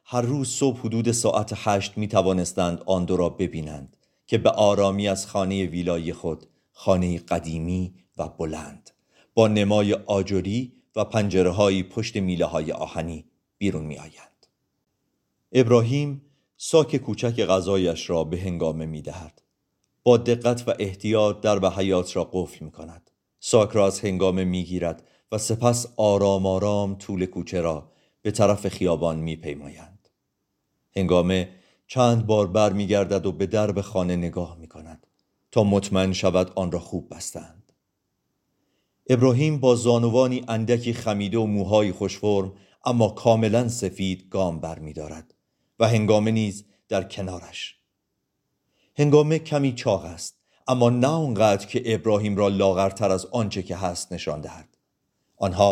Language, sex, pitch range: Persian, male, 90-110 Hz